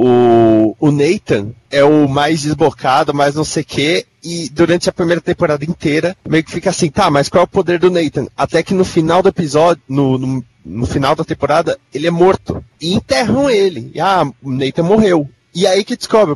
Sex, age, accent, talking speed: male, 30-49, Brazilian, 210 wpm